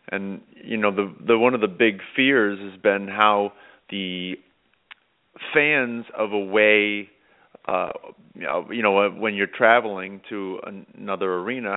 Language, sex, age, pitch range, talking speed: English, male, 30-49, 100-120 Hz, 150 wpm